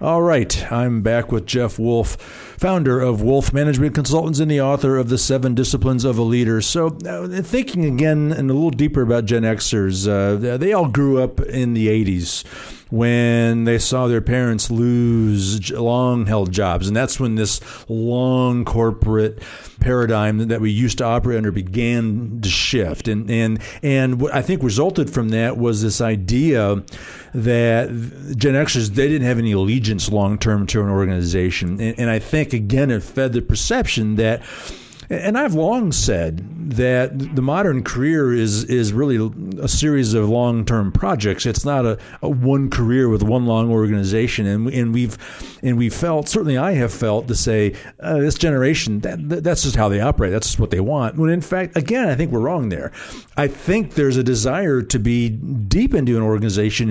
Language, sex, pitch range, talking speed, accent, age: English, male, 110-135 Hz, 180 wpm, American, 50-69